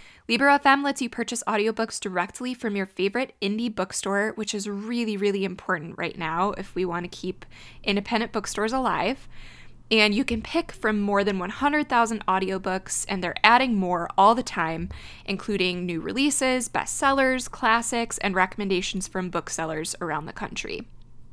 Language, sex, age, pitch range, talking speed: English, female, 20-39, 190-235 Hz, 150 wpm